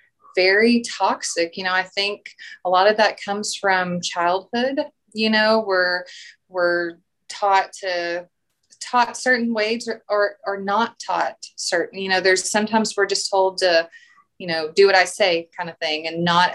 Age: 20-39